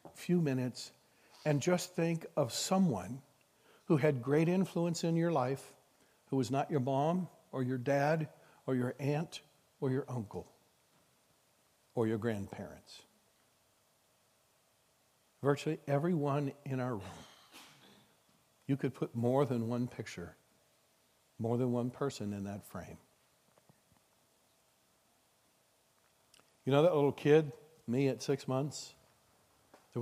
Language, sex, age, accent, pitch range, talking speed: English, male, 60-79, American, 125-160 Hz, 120 wpm